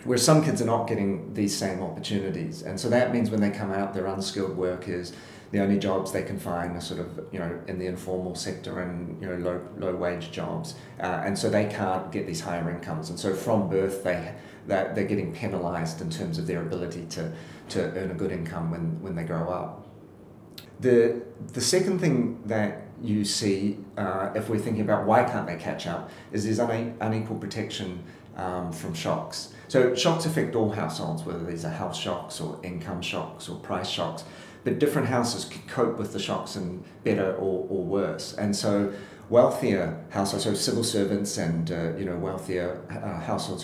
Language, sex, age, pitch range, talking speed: English, male, 40-59, 90-105 Hz, 195 wpm